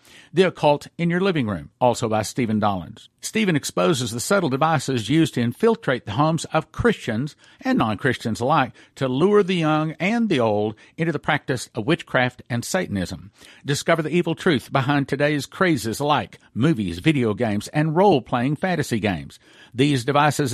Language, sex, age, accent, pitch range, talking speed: English, male, 50-69, American, 120-160 Hz, 165 wpm